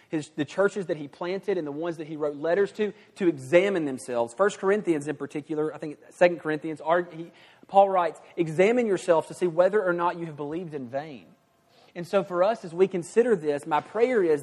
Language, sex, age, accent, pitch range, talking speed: English, male, 30-49, American, 150-190 Hz, 210 wpm